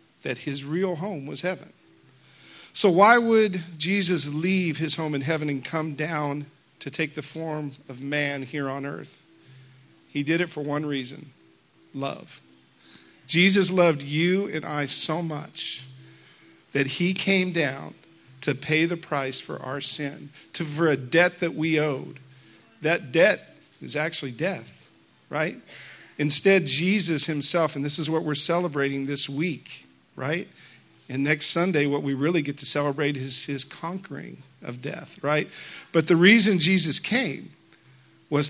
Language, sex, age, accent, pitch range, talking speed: English, male, 50-69, American, 140-170 Hz, 155 wpm